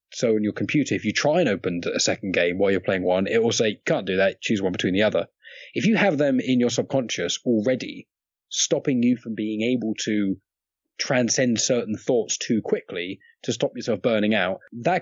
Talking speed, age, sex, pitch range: 210 wpm, 20-39, male, 100-145 Hz